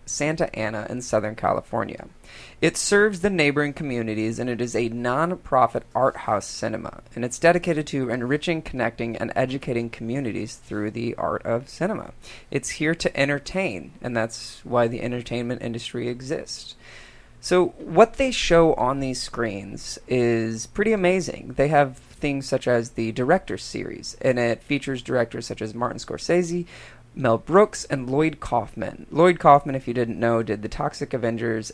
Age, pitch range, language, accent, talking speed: 30-49, 115-150 Hz, English, American, 160 wpm